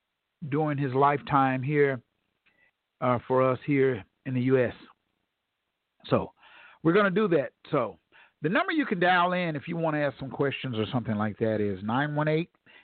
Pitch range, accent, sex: 125-155 Hz, American, male